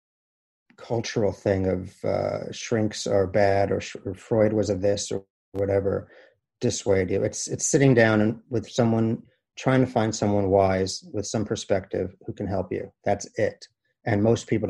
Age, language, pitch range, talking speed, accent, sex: 40-59, English, 100-120 Hz, 165 wpm, American, male